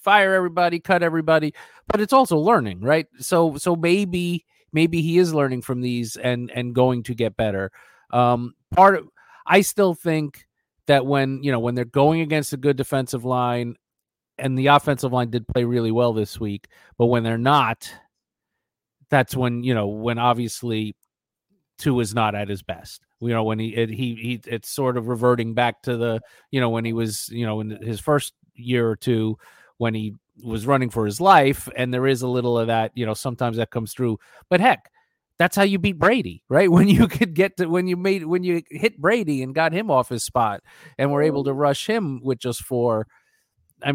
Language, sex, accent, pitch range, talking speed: English, male, American, 115-155 Hz, 205 wpm